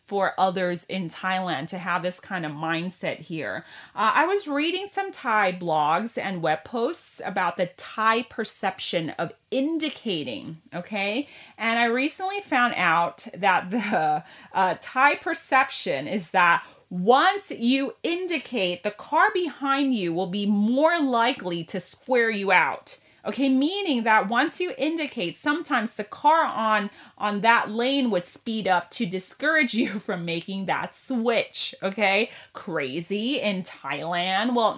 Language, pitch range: Thai, 180-265 Hz